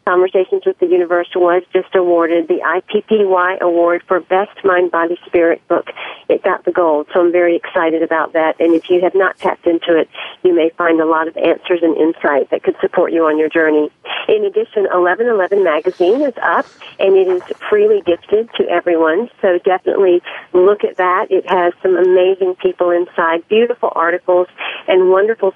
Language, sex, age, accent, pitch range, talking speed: English, female, 50-69, American, 170-210 Hz, 185 wpm